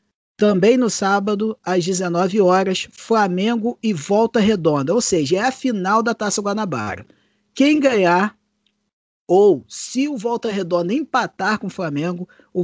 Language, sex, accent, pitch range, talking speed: Portuguese, male, Brazilian, 170-210 Hz, 140 wpm